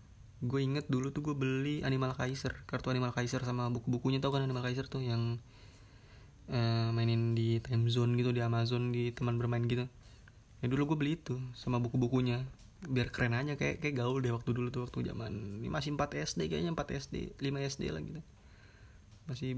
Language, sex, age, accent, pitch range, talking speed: Indonesian, male, 20-39, native, 115-130 Hz, 185 wpm